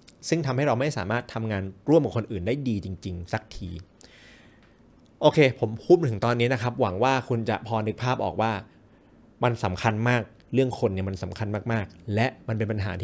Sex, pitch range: male, 100-125 Hz